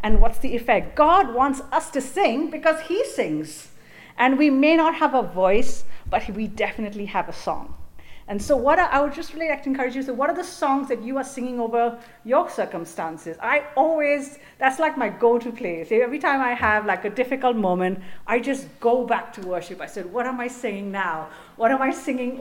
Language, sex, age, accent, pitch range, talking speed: English, female, 50-69, Indian, 200-265 Hz, 215 wpm